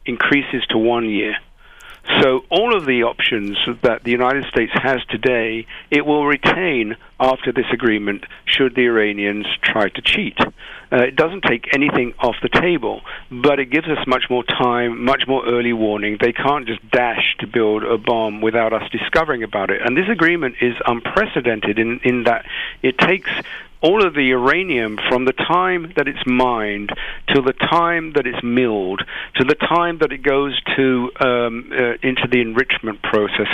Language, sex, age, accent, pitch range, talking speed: English, male, 50-69, British, 115-135 Hz, 175 wpm